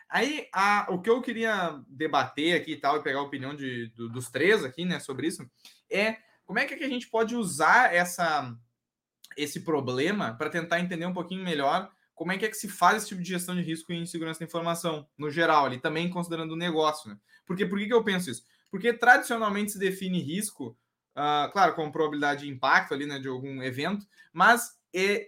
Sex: male